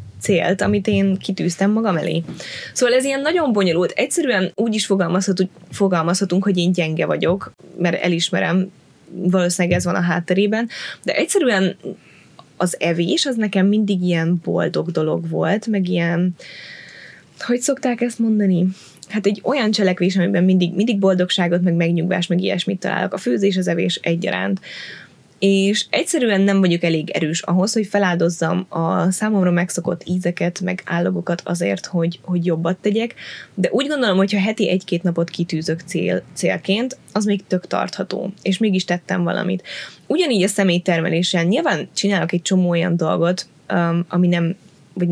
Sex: female